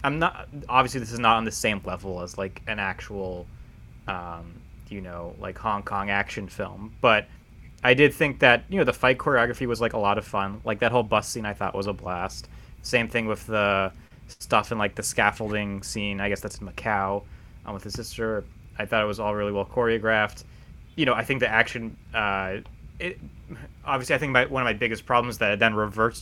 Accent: American